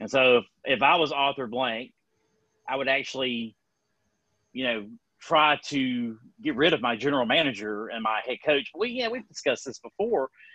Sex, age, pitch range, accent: male, 30-49, 115-140 Hz, American